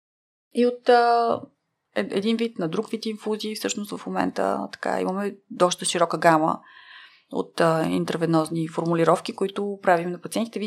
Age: 20-39